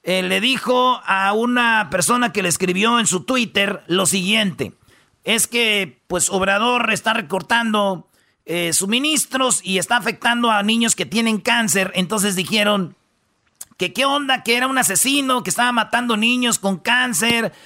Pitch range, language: 190-245 Hz, Spanish